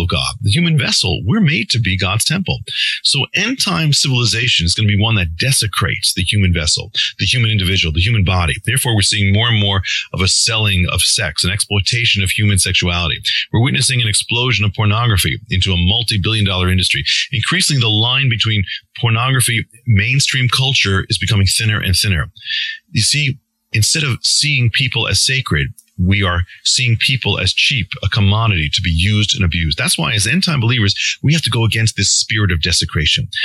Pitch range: 95-125 Hz